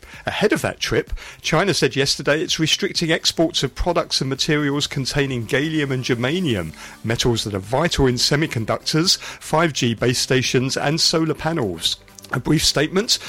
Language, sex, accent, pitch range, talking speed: English, male, British, 115-155 Hz, 150 wpm